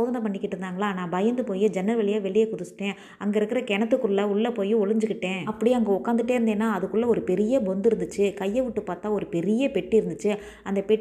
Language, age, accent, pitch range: Tamil, 20-39, native, 200-235 Hz